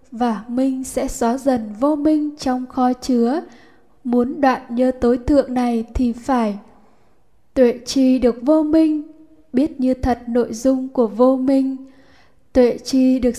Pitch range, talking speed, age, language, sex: 245-285 Hz, 150 wpm, 10-29, Vietnamese, female